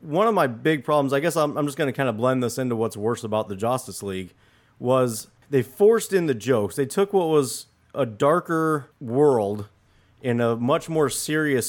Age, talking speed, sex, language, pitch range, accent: 30-49, 210 wpm, male, English, 120-145 Hz, American